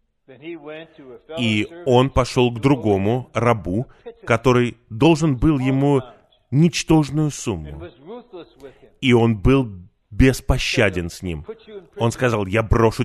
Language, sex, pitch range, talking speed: Russian, male, 95-130 Hz, 100 wpm